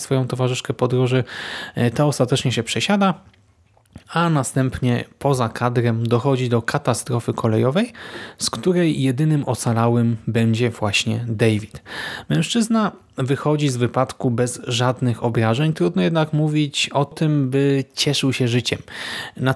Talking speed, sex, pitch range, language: 120 wpm, male, 120-150 Hz, Polish